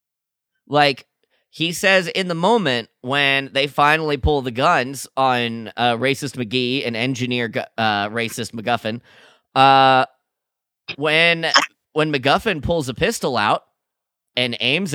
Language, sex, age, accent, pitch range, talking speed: English, male, 30-49, American, 115-150 Hz, 130 wpm